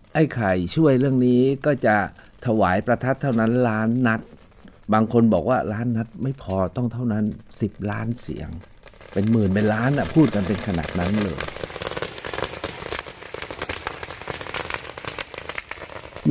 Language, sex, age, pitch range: Thai, male, 60-79, 100-125 Hz